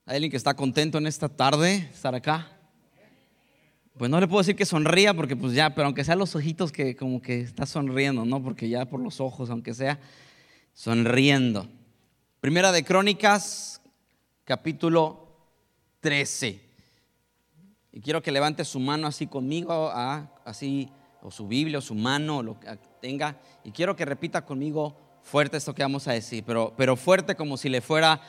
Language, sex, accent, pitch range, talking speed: Spanish, male, Mexican, 130-185 Hz, 170 wpm